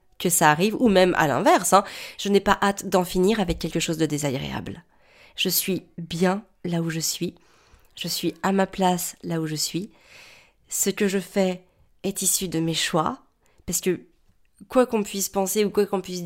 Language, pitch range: French, 170-205 Hz